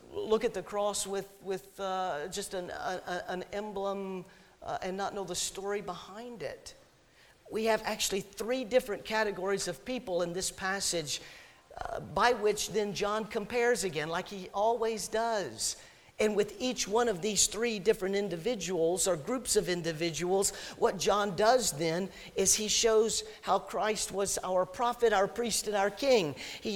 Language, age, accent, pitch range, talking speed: English, 50-69, American, 170-215 Hz, 160 wpm